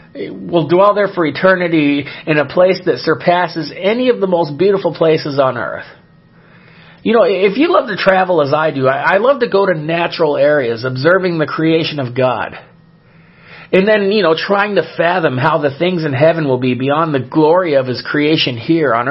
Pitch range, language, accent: 155-185 Hz, English, American